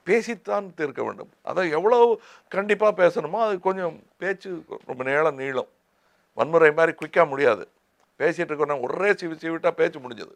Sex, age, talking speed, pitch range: male, 60-79, 140 wpm, 160-210 Hz